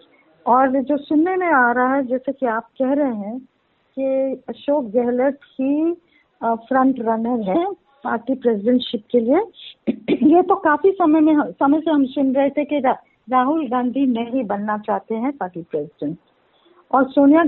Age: 50-69